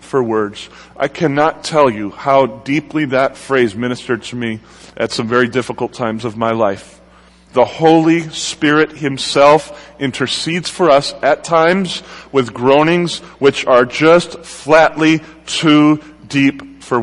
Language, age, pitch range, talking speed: English, 30-49, 130-170 Hz, 135 wpm